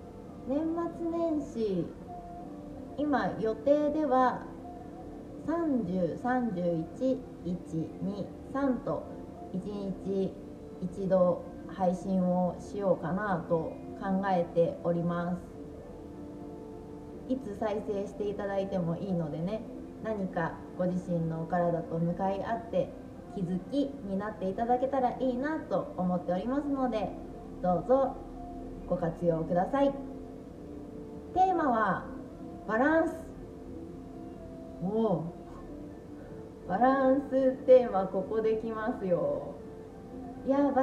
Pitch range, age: 180-260 Hz, 20-39